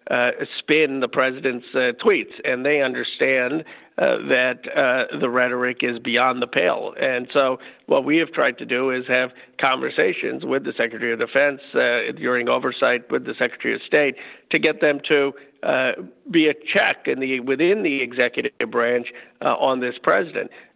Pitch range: 125-145 Hz